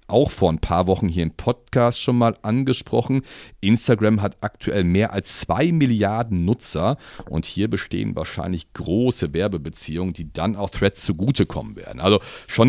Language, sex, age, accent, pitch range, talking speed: German, male, 40-59, German, 90-115 Hz, 155 wpm